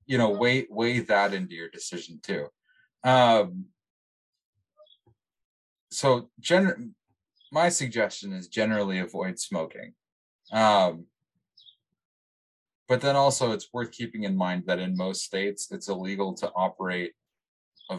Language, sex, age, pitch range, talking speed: English, male, 20-39, 85-115 Hz, 115 wpm